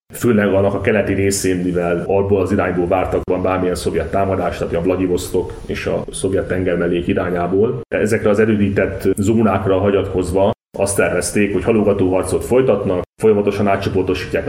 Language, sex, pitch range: Hungarian, male, 95-105 Hz